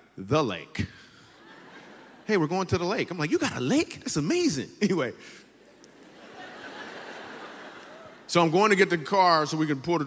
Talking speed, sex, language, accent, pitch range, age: 175 wpm, male, English, American, 115-155 Hz, 30-49